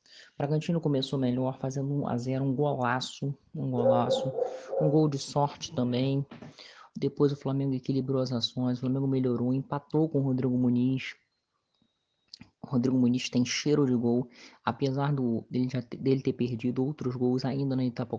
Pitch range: 120-135 Hz